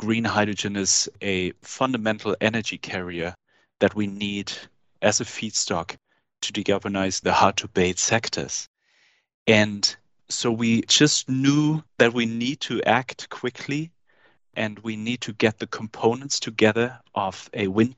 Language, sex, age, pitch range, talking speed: English, male, 30-49, 105-120 Hz, 140 wpm